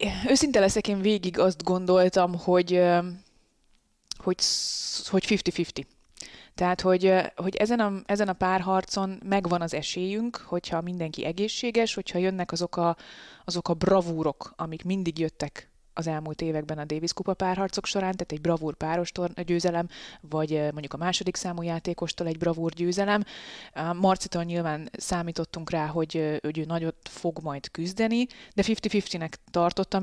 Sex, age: female, 20-39